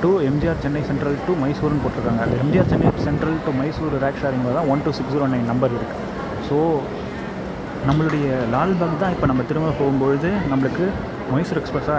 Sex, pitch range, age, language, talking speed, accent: male, 125-150 Hz, 20-39, Tamil, 160 wpm, native